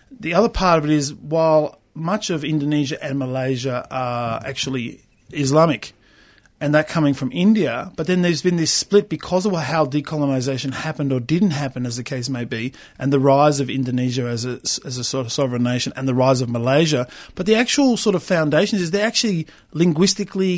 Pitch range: 135-180 Hz